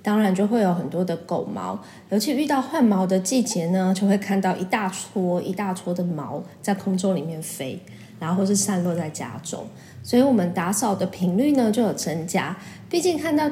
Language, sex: Chinese, female